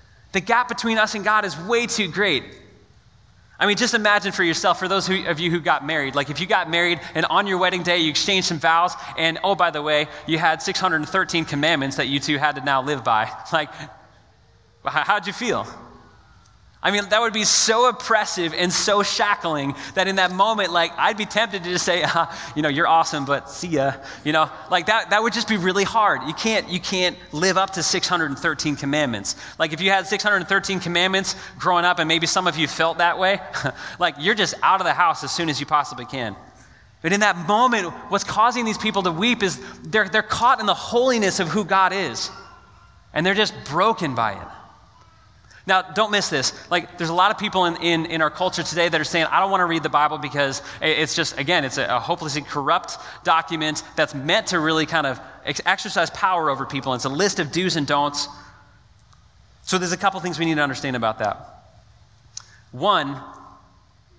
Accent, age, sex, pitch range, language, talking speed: American, 30-49, male, 140-190 Hz, English, 215 wpm